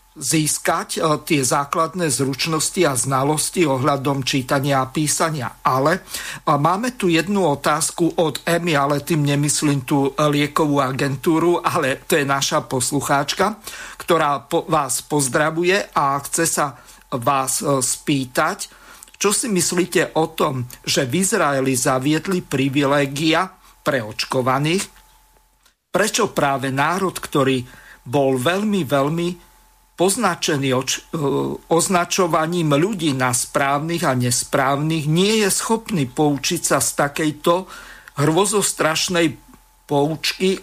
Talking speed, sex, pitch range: 110 wpm, male, 140-175 Hz